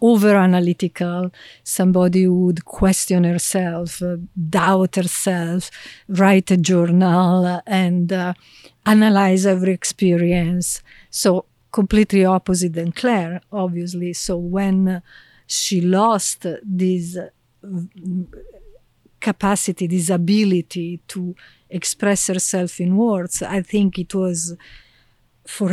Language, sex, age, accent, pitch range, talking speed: English, female, 50-69, Italian, 175-195 Hz, 105 wpm